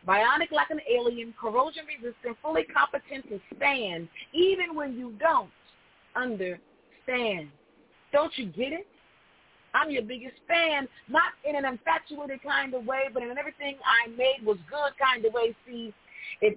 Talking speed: 155 wpm